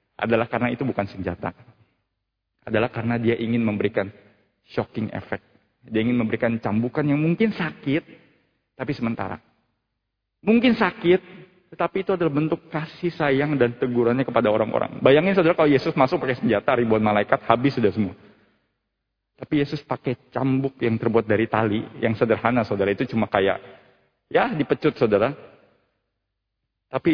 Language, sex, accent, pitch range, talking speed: Indonesian, male, native, 100-120 Hz, 140 wpm